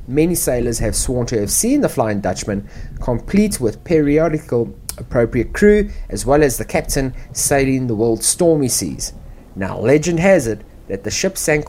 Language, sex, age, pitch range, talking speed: English, male, 30-49, 95-150 Hz, 170 wpm